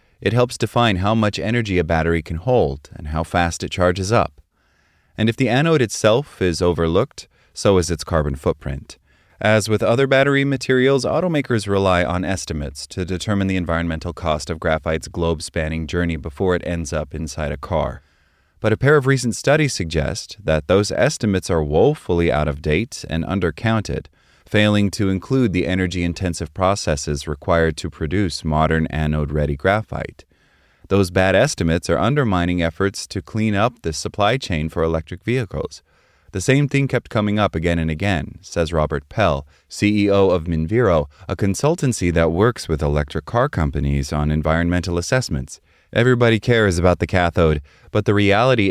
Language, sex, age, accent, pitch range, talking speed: English, male, 30-49, American, 80-105 Hz, 160 wpm